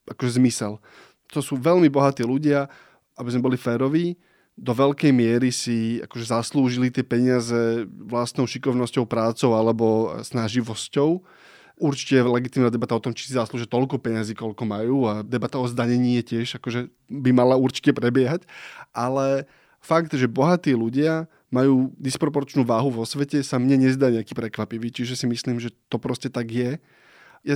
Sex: male